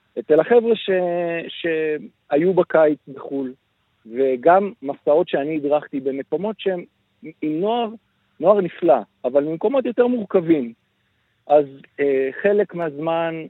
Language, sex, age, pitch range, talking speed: Hebrew, male, 50-69, 130-170 Hz, 105 wpm